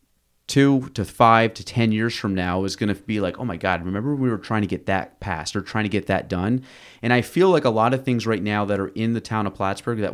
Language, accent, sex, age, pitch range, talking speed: English, American, male, 30-49, 100-125 Hz, 290 wpm